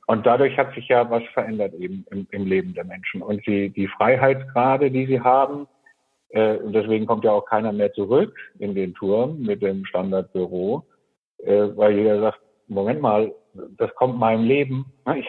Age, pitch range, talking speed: 50-69, 110-130 Hz, 180 wpm